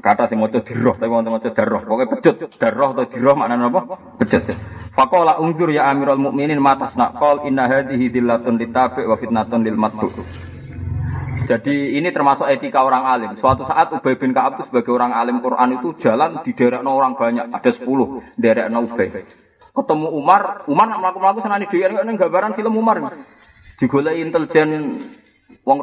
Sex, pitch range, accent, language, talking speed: male, 130-205 Hz, native, Indonesian, 105 wpm